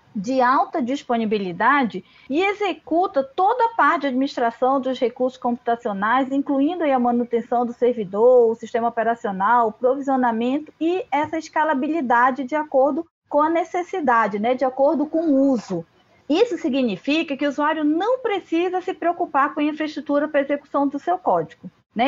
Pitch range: 235-305 Hz